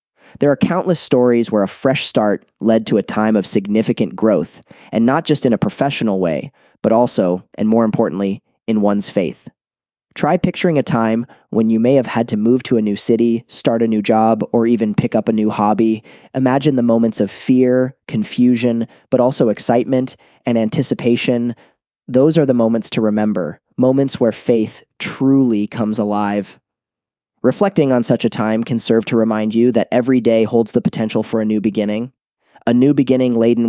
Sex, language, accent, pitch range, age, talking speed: male, English, American, 110-125 Hz, 20-39, 185 wpm